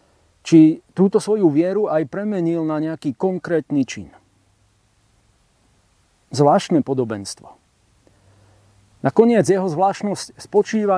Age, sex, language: 40-59, male, Slovak